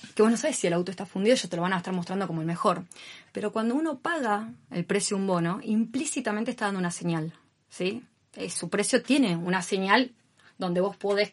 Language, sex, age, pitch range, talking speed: Spanish, female, 20-39, 180-215 Hz, 220 wpm